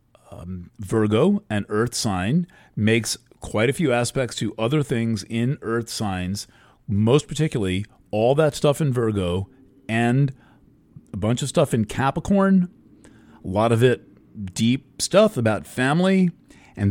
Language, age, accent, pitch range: English, 40-59, American, 105-145 Hz